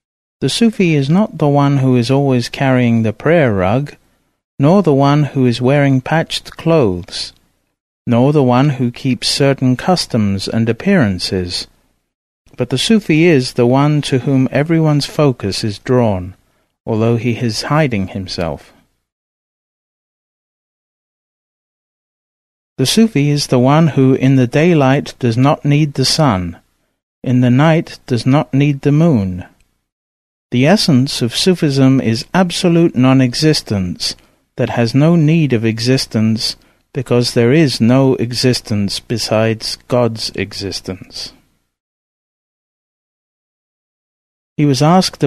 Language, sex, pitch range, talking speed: English, male, 110-150 Hz, 125 wpm